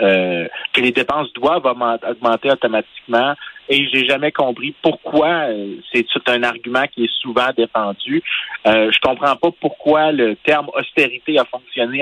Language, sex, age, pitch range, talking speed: French, male, 30-49, 120-170 Hz, 160 wpm